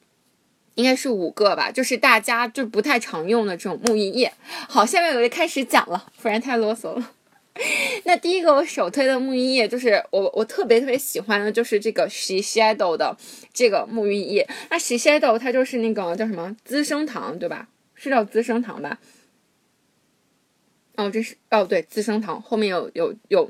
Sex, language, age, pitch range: female, Chinese, 20-39, 220-290 Hz